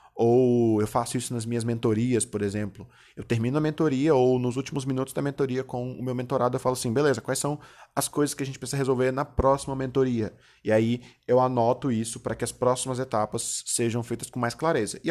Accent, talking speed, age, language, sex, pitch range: Brazilian, 220 wpm, 20-39, Portuguese, male, 120-145 Hz